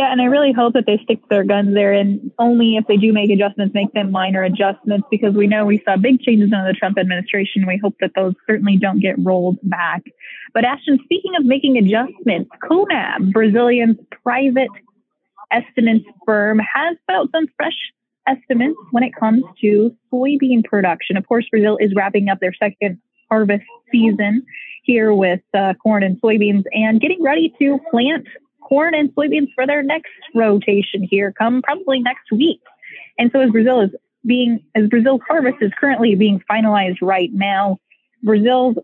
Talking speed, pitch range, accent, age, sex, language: 175 wpm, 200-255 Hz, American, 20-39, female, English